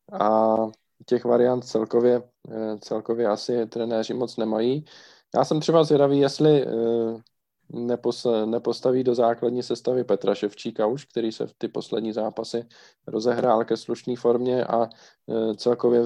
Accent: native